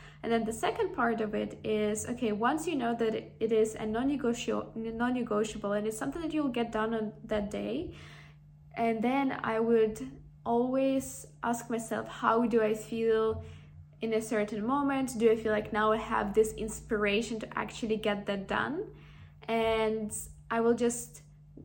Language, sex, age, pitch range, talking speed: English, female, 10-29, 215-235 Hz, 165 wpm